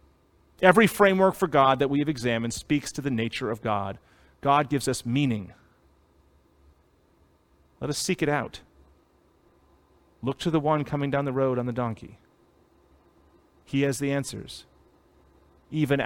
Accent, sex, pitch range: American, male, 100-150 Hz